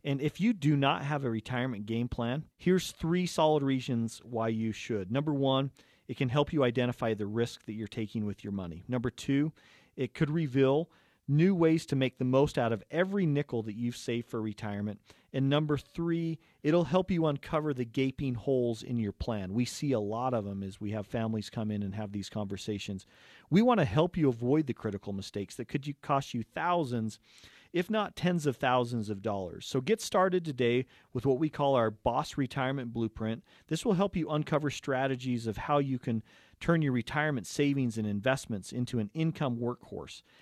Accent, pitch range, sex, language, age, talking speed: American, 110-150 Hz, male, English, 40-59, 200 wpm